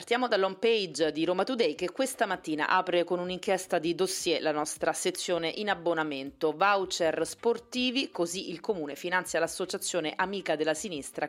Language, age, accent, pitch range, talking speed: Italian, 30-49, native, 155-190 Hz, 155 wpm